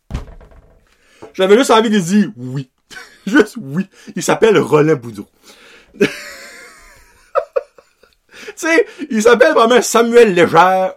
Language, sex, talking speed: French, male, 105 wpm